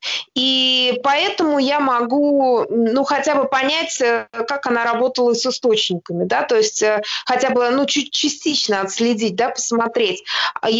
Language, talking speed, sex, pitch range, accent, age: Russian, 135 wpm, female, 235-275 Hz, native, 20-39